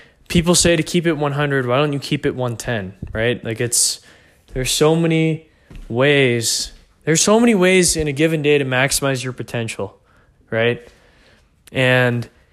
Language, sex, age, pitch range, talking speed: English, male, 20-39, 120-155 Hz, 160 wpm